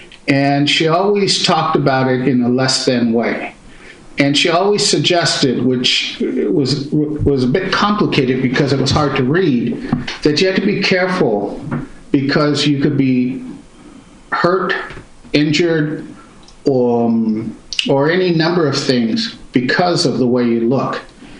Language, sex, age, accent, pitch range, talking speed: English, male, 50-69, American, 130-165 Hz, 145 wpm